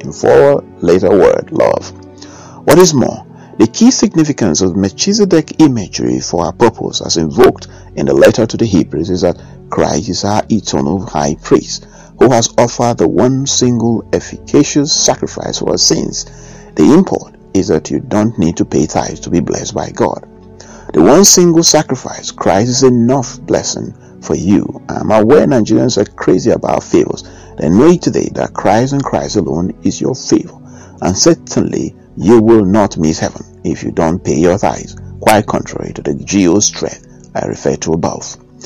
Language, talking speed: English, 170 wpm